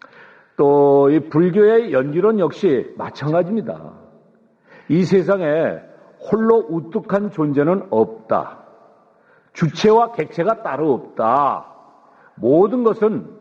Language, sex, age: Korean, male, 50-69